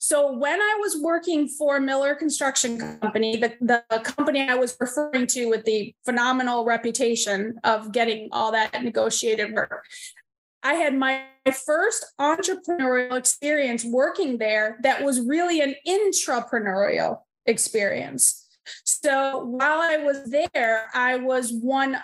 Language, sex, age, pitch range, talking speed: English, female, 30-49, 245-300 Hz, 135 wpm